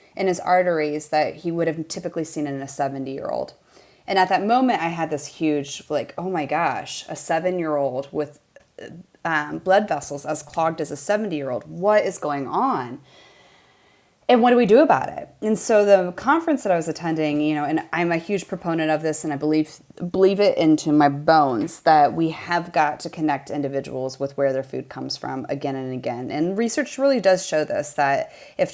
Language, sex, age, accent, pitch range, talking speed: English, female, 30-49, American, 150-185 Hz, 205 wpm